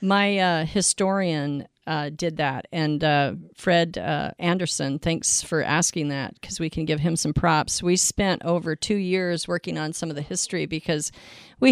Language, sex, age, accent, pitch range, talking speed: English, female, 40-59, American, 155-180 Hz, 180 wpm